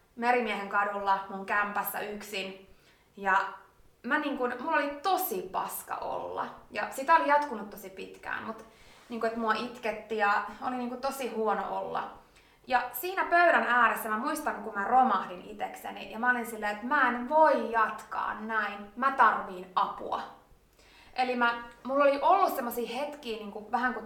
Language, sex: English, female